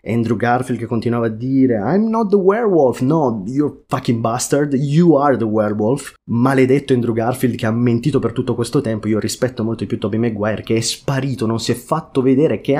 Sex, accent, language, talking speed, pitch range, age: male, native, Italian, 205 wpm, 105-130 Hz, 30-49